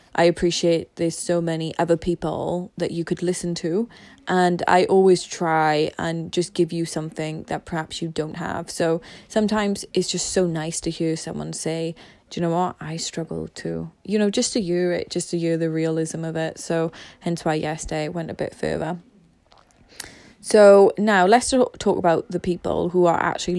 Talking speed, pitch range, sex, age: 190 wpm, 160-180 Hz, female, 20-39